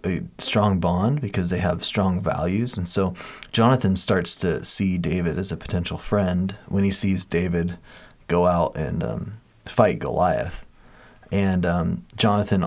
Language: English